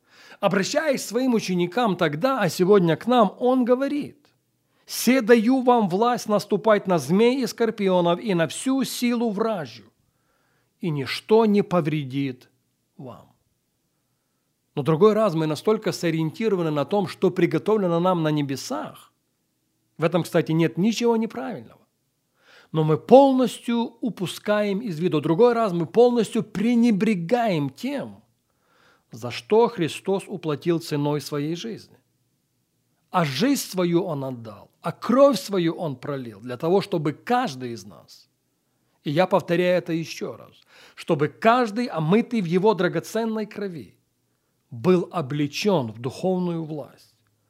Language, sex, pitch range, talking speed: Russian, male, 150-225 Hz, 130 wpm